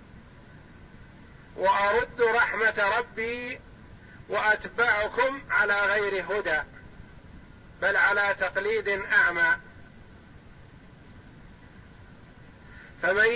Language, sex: Arabic, male